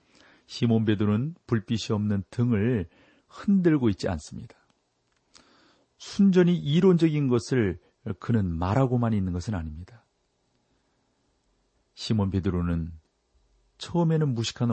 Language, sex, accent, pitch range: Korean, male, native, 95-140 Hz